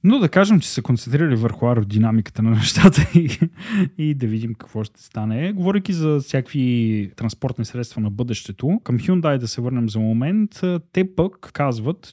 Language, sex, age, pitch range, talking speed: Bulgarian, male, 20-39, 115-170 Hz, 170 wpm